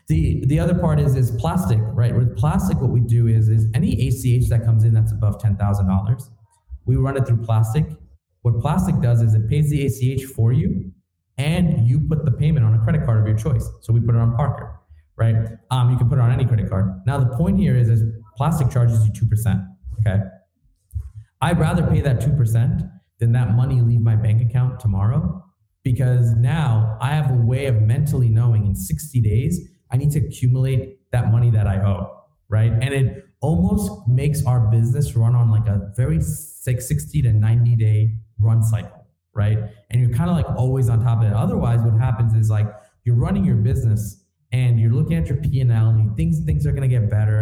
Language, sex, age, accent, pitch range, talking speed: English, male, 30-49, American, 110-130 Hz, 210 wpm